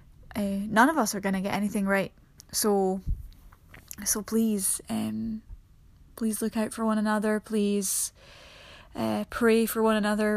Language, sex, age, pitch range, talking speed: English, female, 10-29, 205-225 Hz, 145 wpm